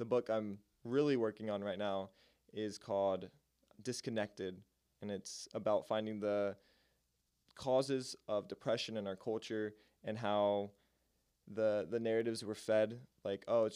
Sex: male